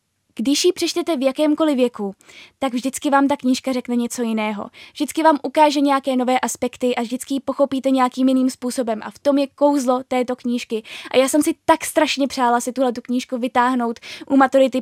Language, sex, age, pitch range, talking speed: Czech, female, 10-29, 240-290 Hz, 195 wpm